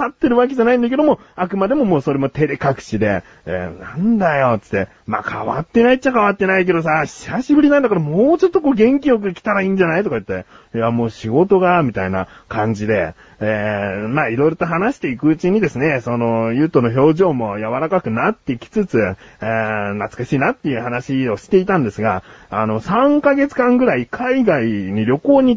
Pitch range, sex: 120-205 Hz, male